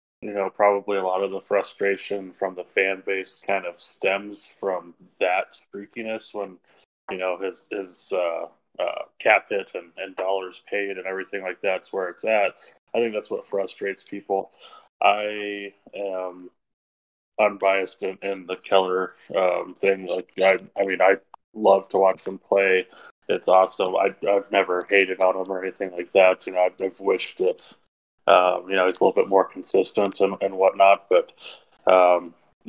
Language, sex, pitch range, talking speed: English, male, 90-100 Hz, 175 wpm